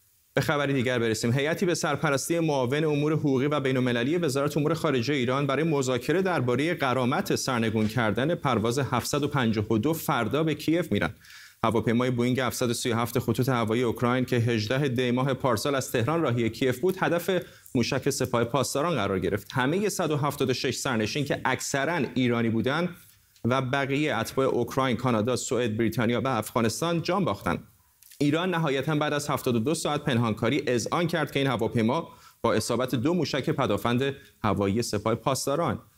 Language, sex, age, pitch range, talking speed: Persian, male, 30-49, 115-150 Hz, 145 wpm